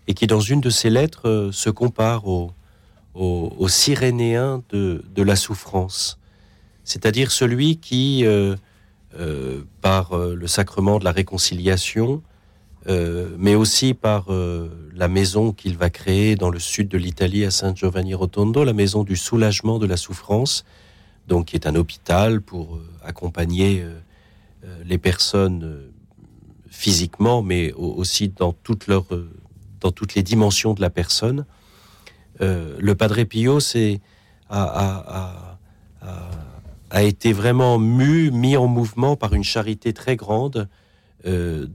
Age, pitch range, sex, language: 40-59, 90-110 Hz, male, French